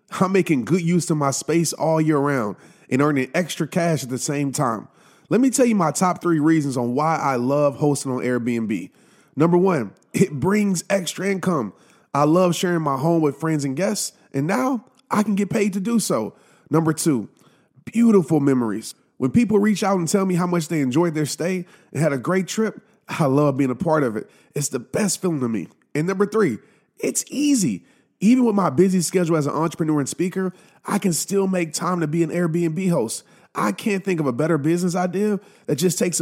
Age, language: 30-49, English